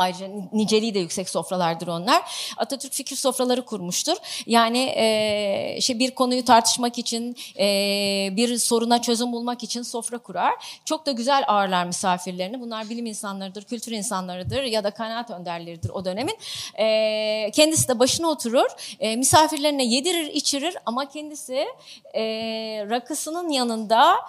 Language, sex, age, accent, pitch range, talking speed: Turkish, female, 30-49, native, 215-275 Hz, 135 wpm